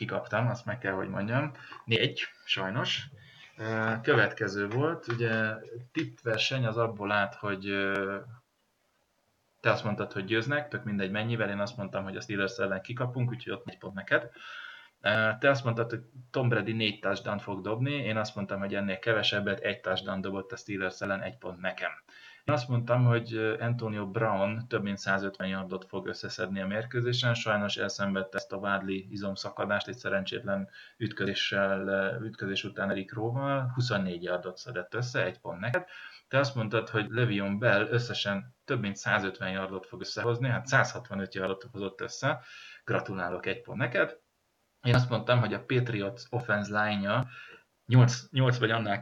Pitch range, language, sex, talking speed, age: 100-120 Hz, Hungarian, male, 160 wpm, 20-39